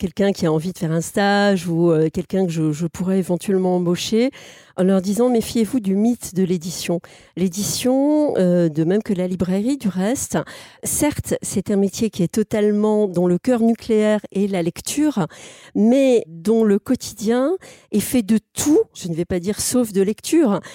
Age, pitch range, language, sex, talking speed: 40-59, 185-245 Hz, French, female, 190 wpm